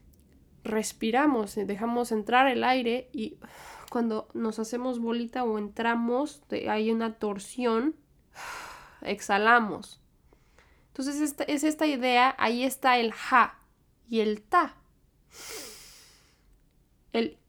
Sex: female